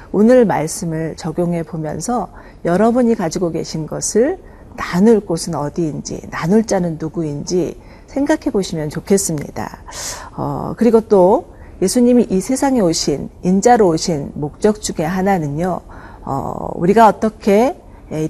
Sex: female